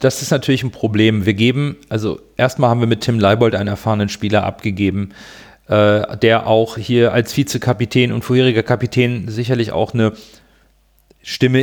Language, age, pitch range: German, 40-59, 110-135 Hz